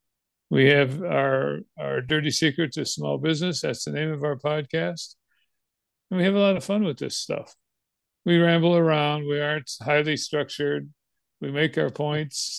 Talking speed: 170 wpm